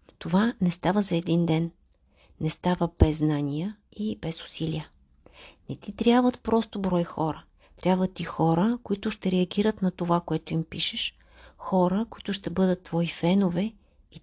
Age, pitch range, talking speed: 50-69, 160-205 Hz, 155 wpm